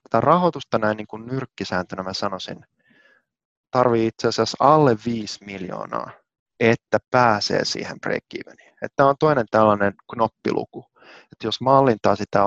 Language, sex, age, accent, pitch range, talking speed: Finnish, male, 30-49, native, 100-125 Hz, 130 wpm